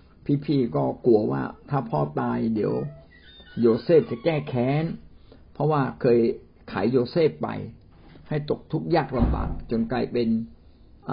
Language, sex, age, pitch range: Thai, male, 60-79, 85-130 Hz